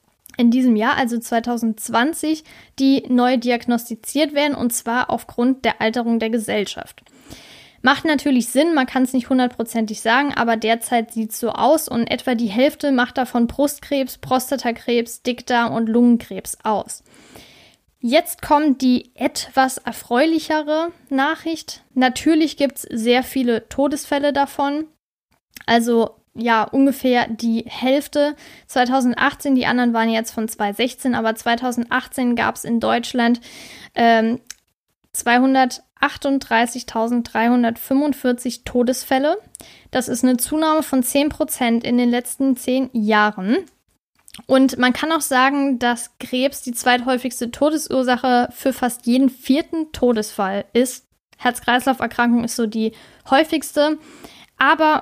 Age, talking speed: 10-29, 120 wpm